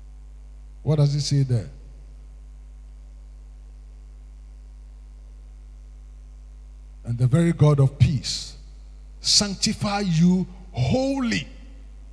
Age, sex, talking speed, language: 50-69, male, 70 wpm, English